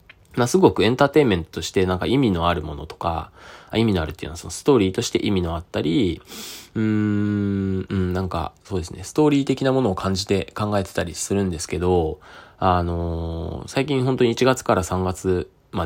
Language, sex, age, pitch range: Japanese, male, 20-39, 90-115 Hz